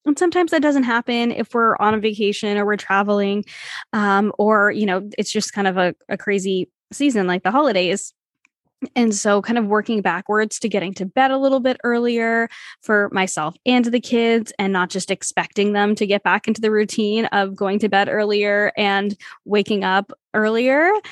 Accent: American